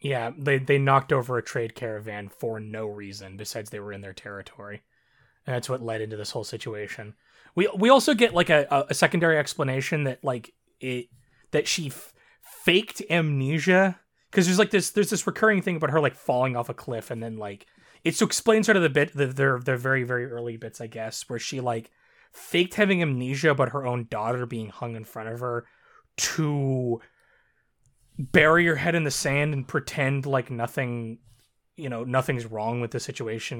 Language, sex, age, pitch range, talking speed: English, male, 20-39, 115-145 Hz, 200 wpm